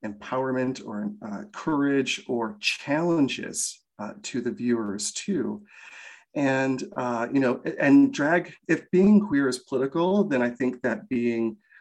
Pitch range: 105-135 Hz